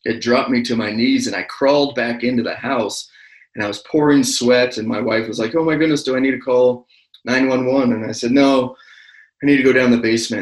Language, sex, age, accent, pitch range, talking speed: English, male, 30-49, American, 110-125 Hz, 250 wpm